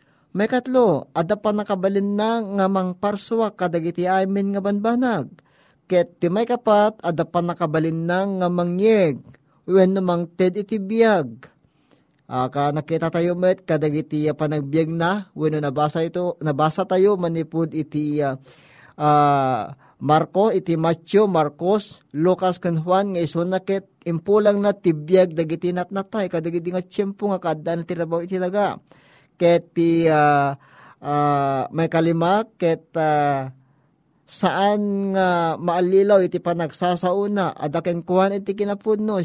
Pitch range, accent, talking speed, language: 160-195 Hz, native, 135 wpm, Filipino